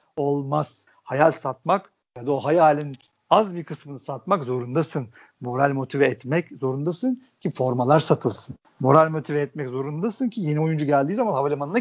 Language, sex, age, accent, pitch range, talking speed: Turkish, male, 50-69, native, 150-250 Hz, 145 wpm